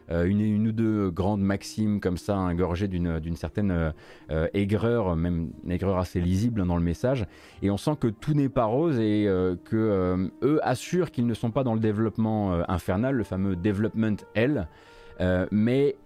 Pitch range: 90-120 Hz